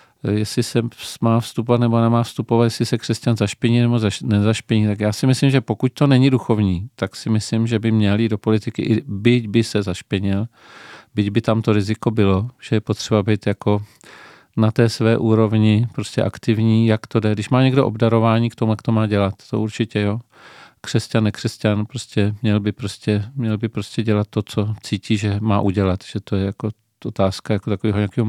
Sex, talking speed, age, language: male, 200 wpm, 40-59, Czech